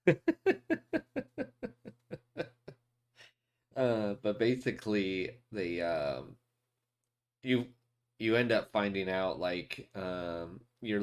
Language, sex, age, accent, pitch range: English, male, 30-49, American, 95-120 Hz